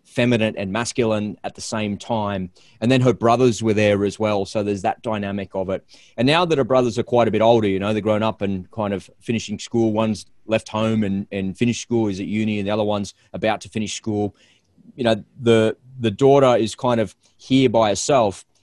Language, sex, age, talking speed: English, male, 30-49, 225 wpm